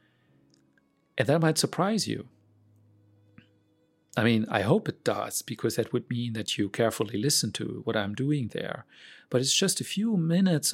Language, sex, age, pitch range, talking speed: English, male, 40-59, 110-140 Hz, 170 wpm